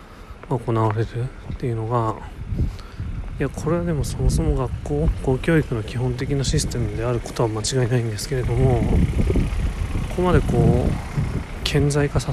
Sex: male